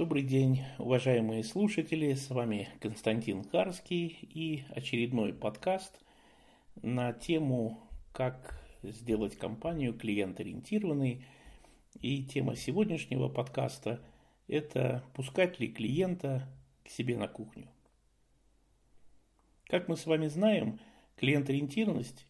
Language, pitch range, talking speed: Russian, 120-170 Hz, 95 wpm